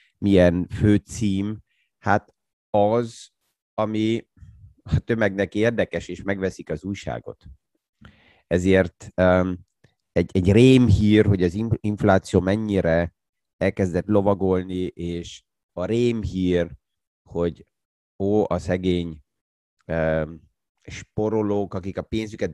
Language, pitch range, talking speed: Hungarian, 85-110 Hz, 95 wpm